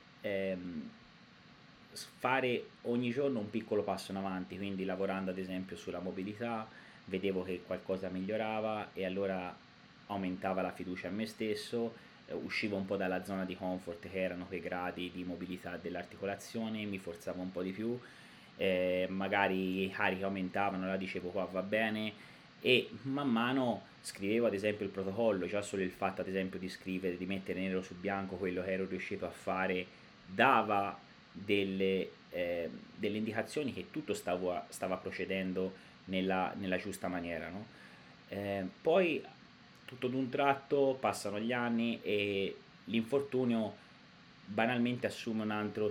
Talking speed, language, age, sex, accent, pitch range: 150 wpm, Italian, 30-49, male, native, 95-105 Hz